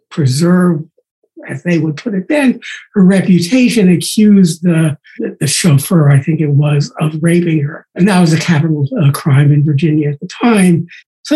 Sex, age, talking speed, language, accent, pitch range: male, 60-79, 175 wpm, English, American, 155-210 Hz